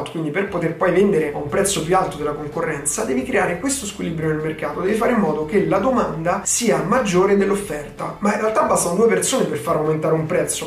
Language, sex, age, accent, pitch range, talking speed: Italian, male, 20-39, native, 165-210 Hz, 220 wpm